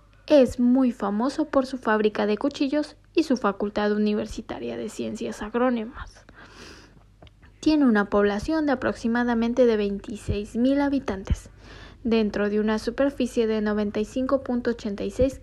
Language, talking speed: Spanish, 115 wpm